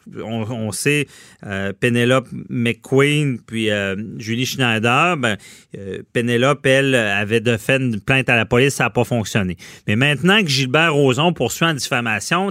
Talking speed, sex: 165 wpm, male